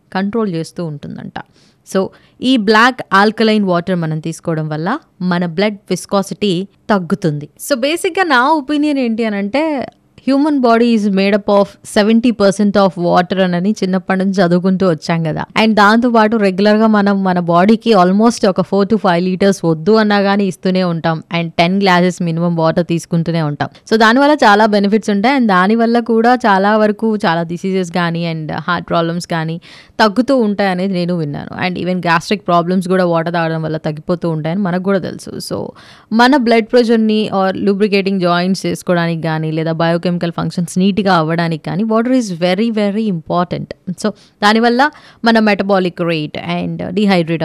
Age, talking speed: 20-39, 165 wpm